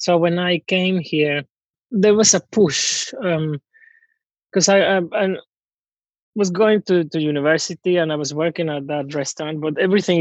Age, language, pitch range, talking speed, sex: 20-39, English, 135-165 Hz, 165 wpm, male